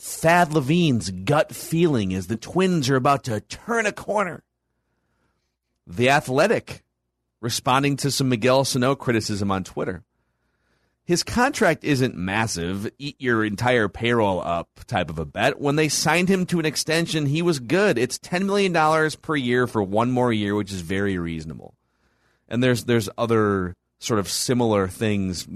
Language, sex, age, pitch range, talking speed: English, male, 30-49, 100-145 Hz, 160 wpm